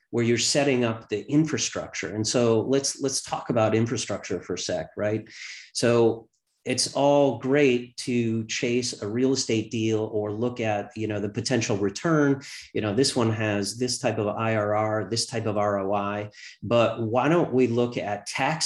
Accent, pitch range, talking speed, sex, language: American, 105-120 Hz, 175 wpm, male, English